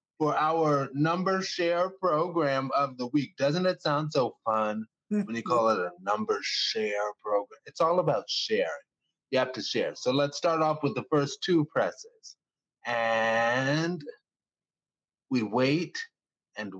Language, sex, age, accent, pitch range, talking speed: English, male, 30-49, American, 125-175 Hz, 150 wpm